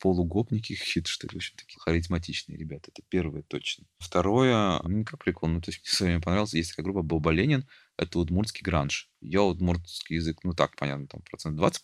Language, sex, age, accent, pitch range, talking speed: Russian, male, 20-39, native, 80-95 Hz, 190 wpm